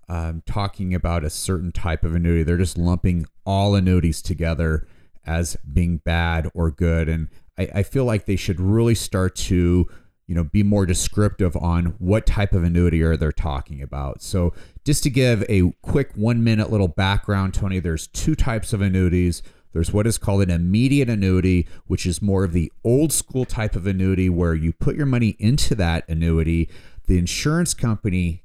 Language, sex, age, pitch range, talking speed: English, male, 30-49, 85-110 Hz, 185 wpm